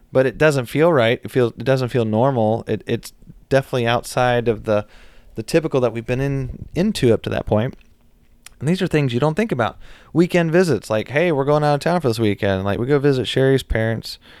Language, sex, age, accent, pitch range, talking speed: English, male, 30-49, American, 110-135 Hz, 225 wpm